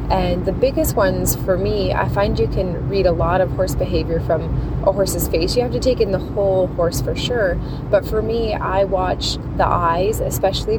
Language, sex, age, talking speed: English, female, 20-39, 210 wpm